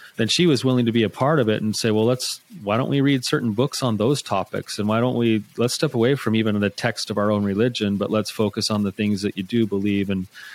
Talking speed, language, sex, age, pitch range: 280 wpm, English, male, 30-49, 100-125 Hz